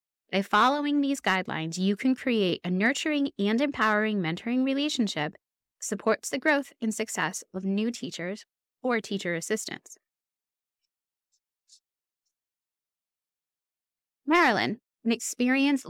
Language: English